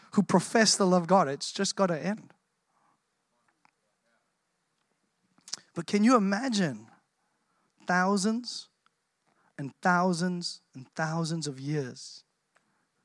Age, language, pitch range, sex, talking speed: 30-49, English, 165-215 Hz, male, 100 wpm